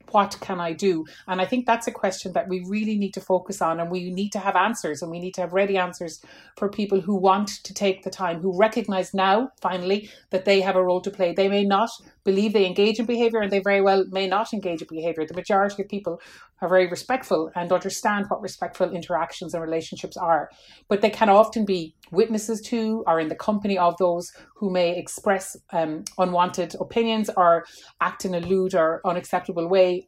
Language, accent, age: English, Irish, 30-49